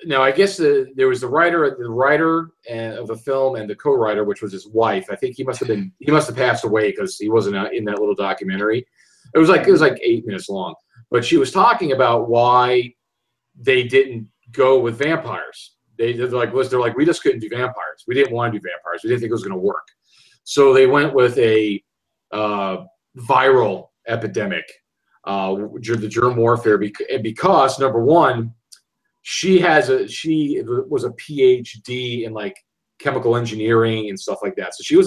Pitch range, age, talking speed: 115-190 Hz, 40-59, 200 wpm